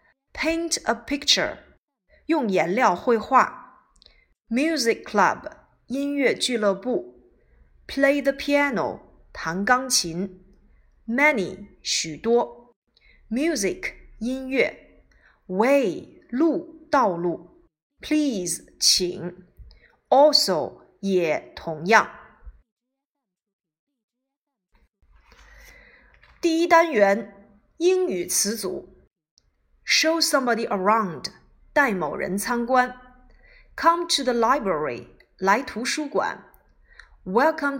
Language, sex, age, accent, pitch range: Chinese, female, 30-49, native, 200-290 Hz